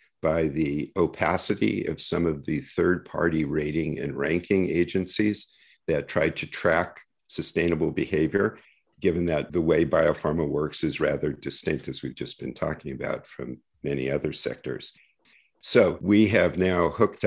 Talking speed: 145 wpm